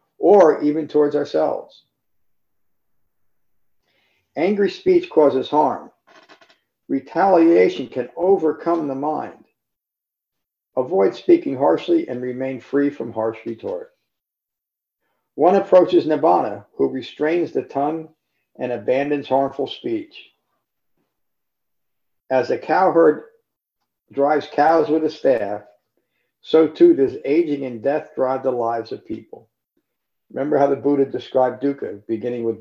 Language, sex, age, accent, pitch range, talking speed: English, male, 50-69, American, 115-155 Hz, 110 wpm